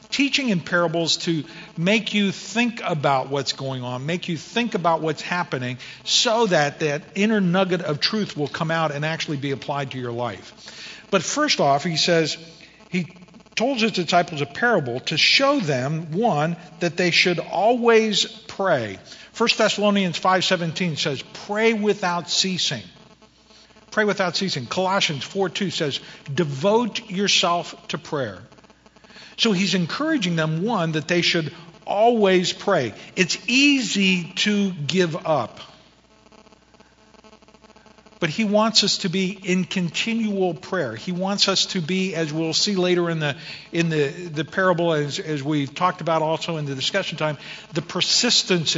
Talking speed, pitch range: 150 wpm, 160-210 Hz